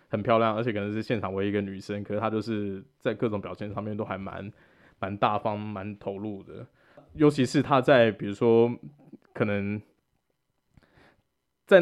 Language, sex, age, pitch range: Chinese, male, 20-39, 105-120 Hz